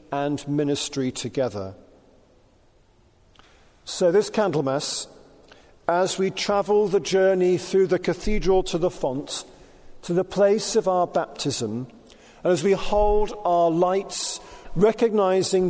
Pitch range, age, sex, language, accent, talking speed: 140-185 Hz, 50-69, male, English, British, 115 wpm